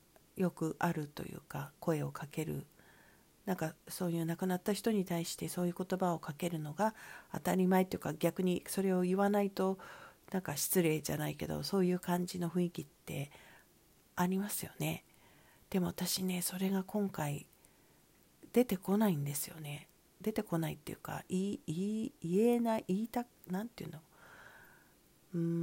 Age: 40-59